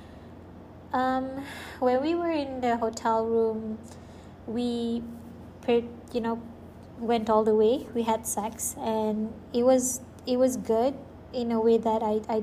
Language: English